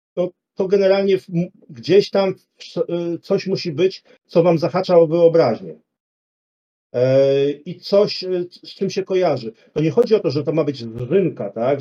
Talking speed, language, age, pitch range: 145 wpm, Polish, 40-59, 140-175 Hz